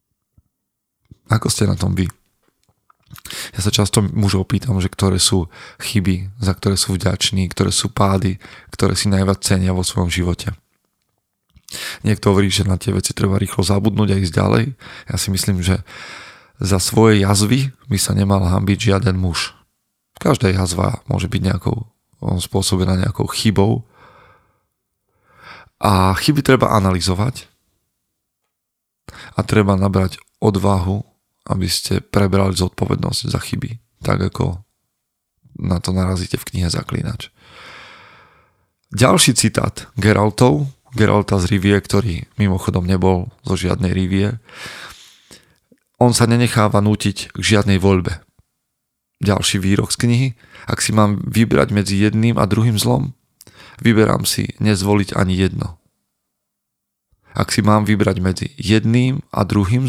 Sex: male